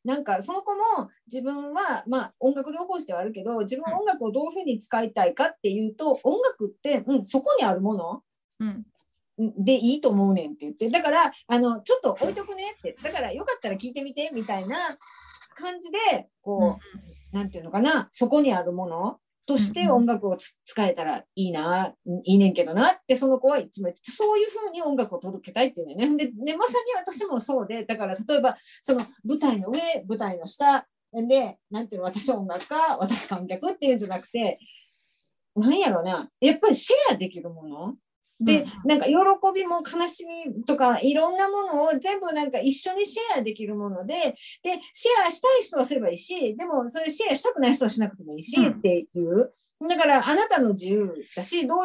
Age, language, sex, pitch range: 40-59, Japanese, female, 205-310 Hz